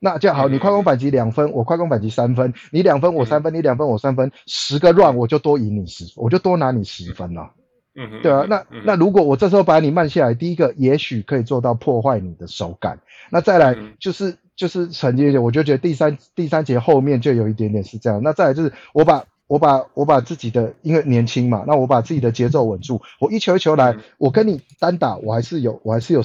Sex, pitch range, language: male, 115-170 Hz, Chinese